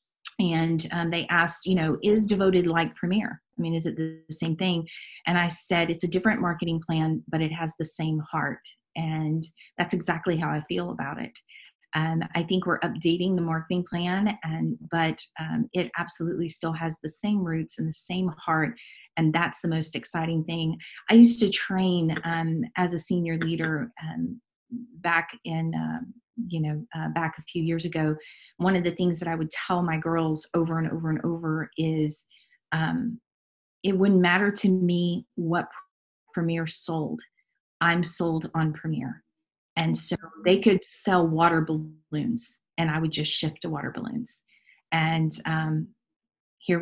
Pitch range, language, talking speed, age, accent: 160-185 Hz, English, 175 wpm, 30-49, American